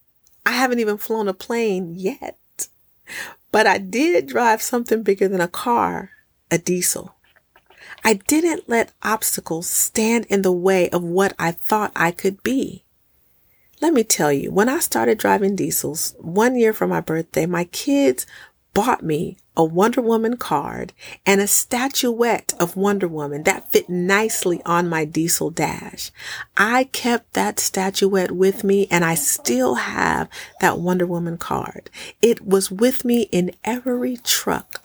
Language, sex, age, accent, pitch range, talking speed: English, female, 40-59, American, 170-225 Hz, 155 wpm